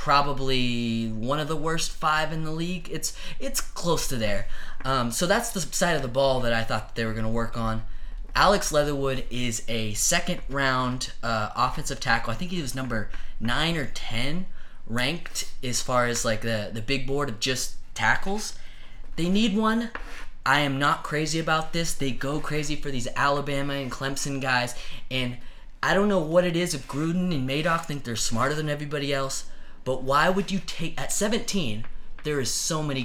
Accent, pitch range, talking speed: American, 120-160 Hz, 190 wpm